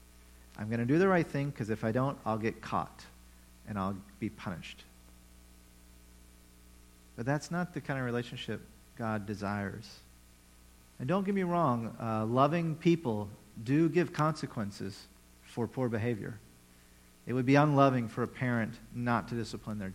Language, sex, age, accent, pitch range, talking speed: English, male, 40-59, American, 85-130 Hz, 155 wpm